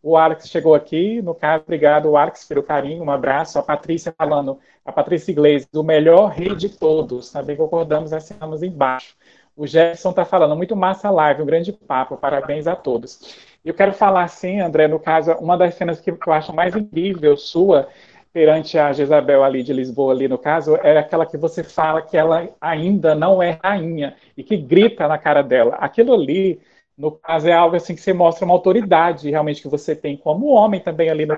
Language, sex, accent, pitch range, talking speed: Portuguese, male, Brazilian, 155-185 Hz, 205 wpm